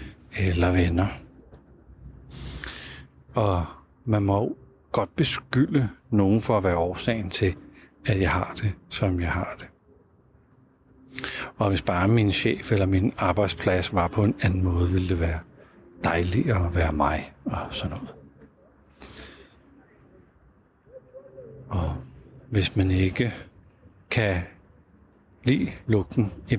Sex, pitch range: male, 85-110 Hz